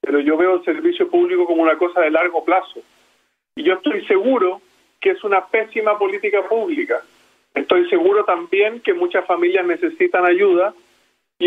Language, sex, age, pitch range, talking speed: Spanish, male, 40-59, 190-320 Hz, 160 wpm